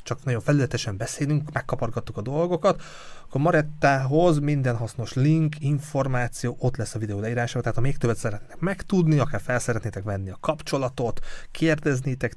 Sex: male